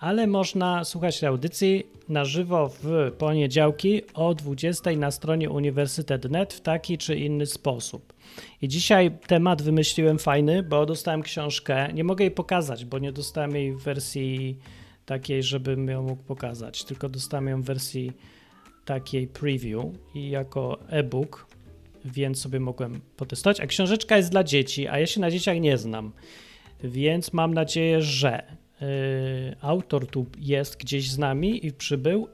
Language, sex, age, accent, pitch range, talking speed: Polish, male, 30-49, native, 135-165 Hz, 145 wpm